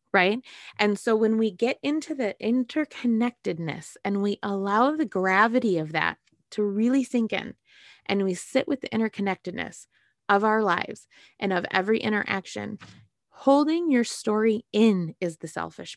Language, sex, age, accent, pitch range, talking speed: English, female, 20-39, American, 200-250 Hz, 150 wpm